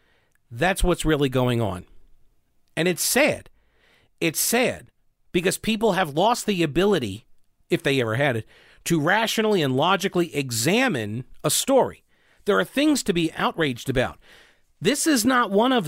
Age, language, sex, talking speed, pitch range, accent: 40-59, English, male, 150 wpm, 145-210 Hz, American